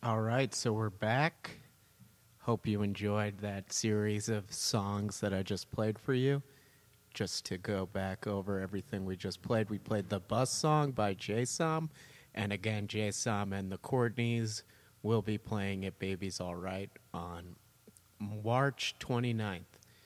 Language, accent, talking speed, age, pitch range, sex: English, American, 150 wpm, 30-49, 100-125 Hz, male